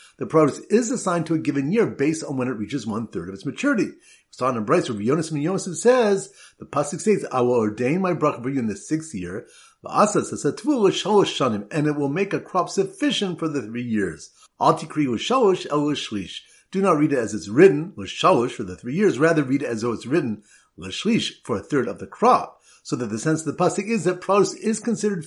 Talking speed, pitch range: 210 wpm, 130-205 Hz